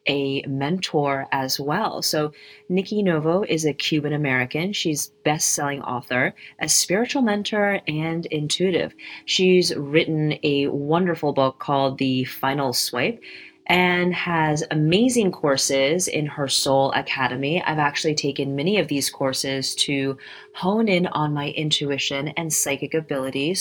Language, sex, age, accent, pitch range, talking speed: English, female, 30-49, American, 140-190 Hz, 130 wpm